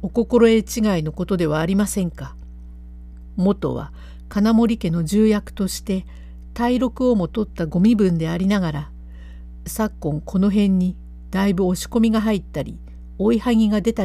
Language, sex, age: Japanese, female, 50-69